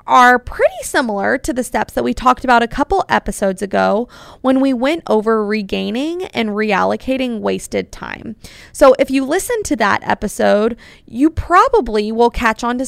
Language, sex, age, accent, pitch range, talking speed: English, female, 20-39, American, 225-300 Hz, 170 wpm